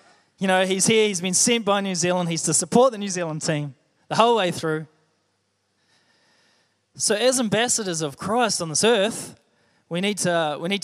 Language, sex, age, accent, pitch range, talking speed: English, male, 20-39, Australian, 155-195 Hz, 190 wpm